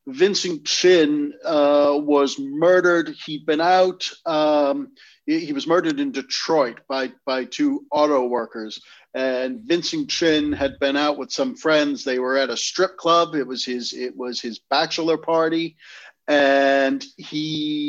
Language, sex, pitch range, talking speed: English, male, 140-180 Hz, 150 wpm